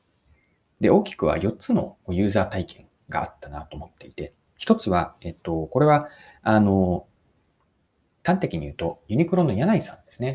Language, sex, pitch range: Japanese, male, 90-135 Hz